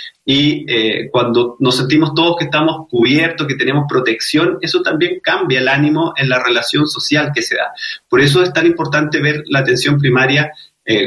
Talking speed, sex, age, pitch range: 185 wpm, male, 30-49, 125-160 Hz